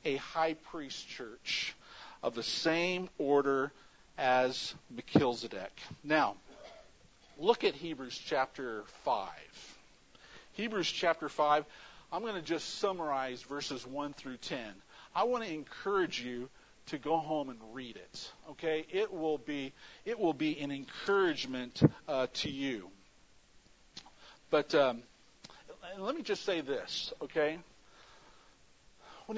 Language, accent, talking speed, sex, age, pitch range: English, American, 120 wpm, male, 50-69, 135-195 Hz